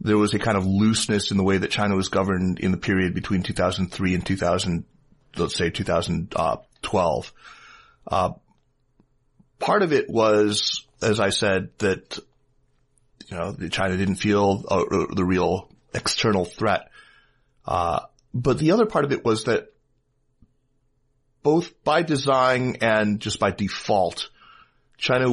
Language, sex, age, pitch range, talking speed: English, male, 30-49, 100-125 Hz, 140 wpm